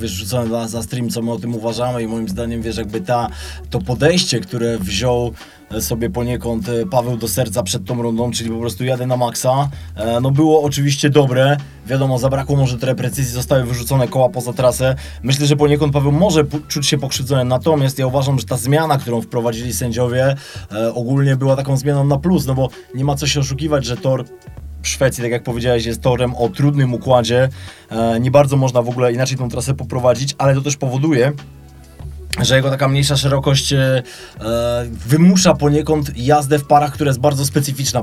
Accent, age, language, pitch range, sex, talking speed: native, 20-39, Polish, 120-145 Hz, male, 190 wpm